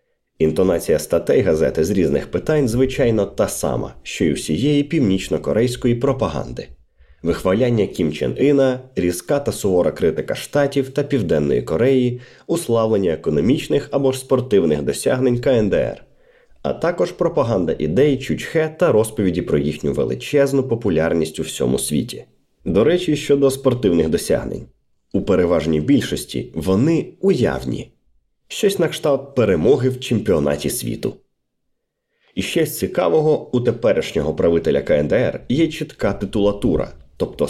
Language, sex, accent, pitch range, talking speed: Ukrainian, male, native, 100-155 Hz, 120 wpm